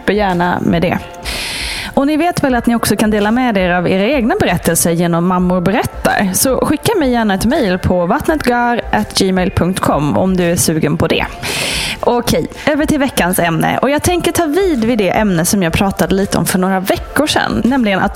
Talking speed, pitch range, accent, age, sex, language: 190 wpm, 180-250 Hz, Norwegian, 20-39, female, Swedish